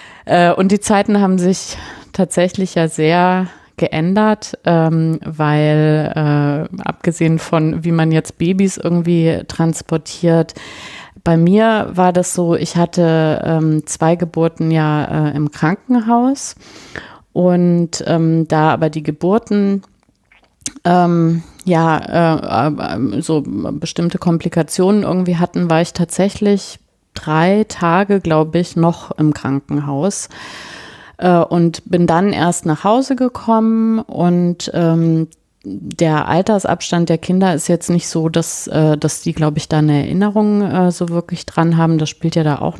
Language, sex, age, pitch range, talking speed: German, female, 30-49, 160-185 Hz, 125 wpm